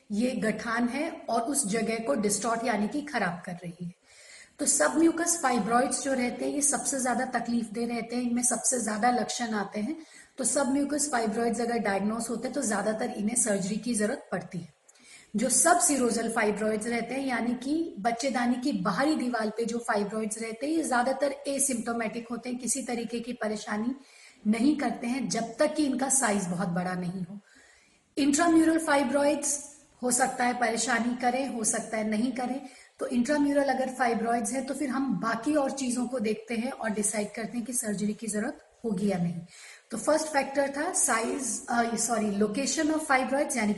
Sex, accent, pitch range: female, native, 225-275 Hz